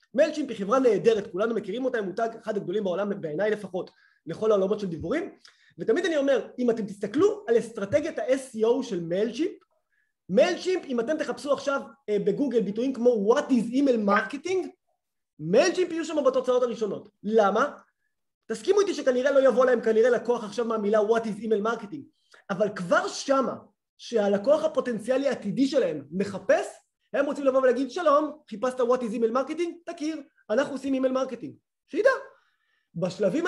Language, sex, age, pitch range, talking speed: Hebrew, male, 20-39, 205-285 Hz, 155 wpm